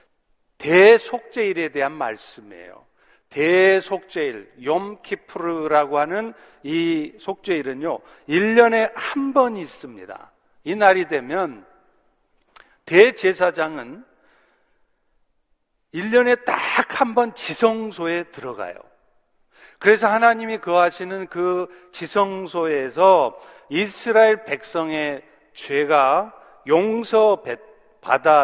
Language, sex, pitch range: Korean, male, 160-245 Hz